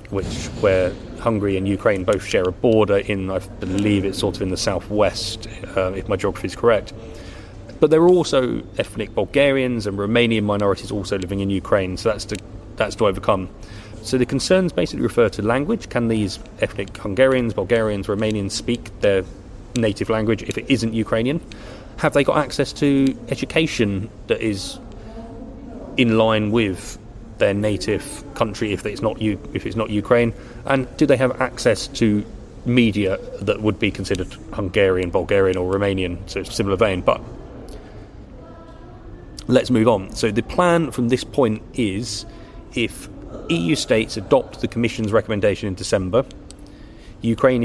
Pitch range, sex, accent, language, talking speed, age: 100-120 Hz, male, British, English, 155 wpm, 30-49